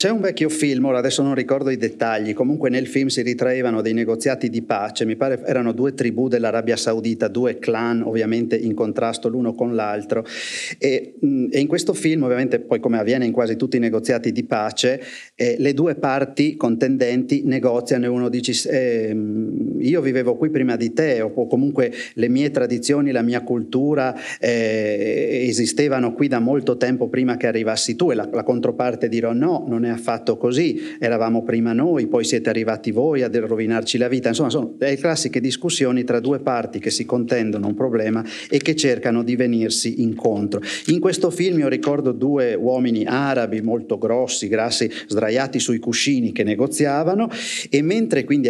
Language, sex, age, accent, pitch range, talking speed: Italian, male, 30-49, native, 115-145 Hz, 175 wpm